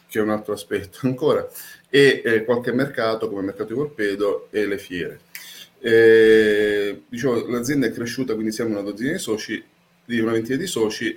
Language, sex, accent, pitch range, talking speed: Italian, male, native, 110-130 Hz, 175 wpm